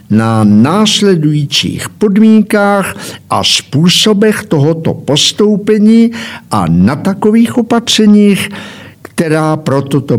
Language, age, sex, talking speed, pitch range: Czech, 60-79, male, 80 wpm, 135-200 Hz